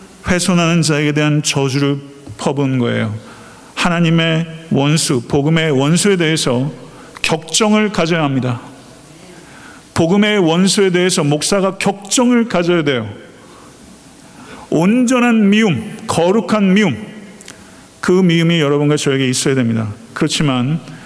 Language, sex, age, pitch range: Korean, male, 50-69, 135-170 Hz